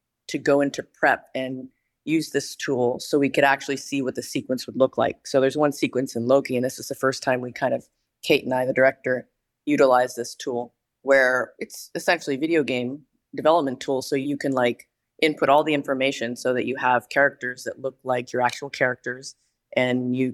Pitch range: 125-140 Hz